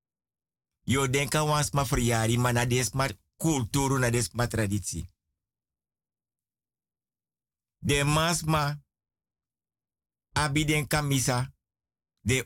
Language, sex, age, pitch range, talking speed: Dutch, male, 60-79, 110-155 Hz, 75 wpm